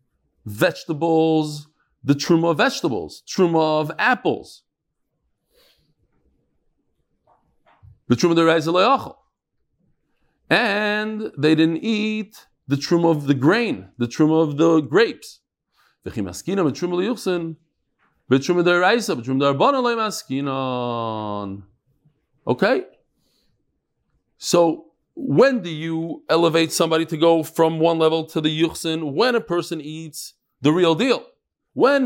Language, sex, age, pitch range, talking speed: English, male, 40-59, 150-200 Hz, 85 wpm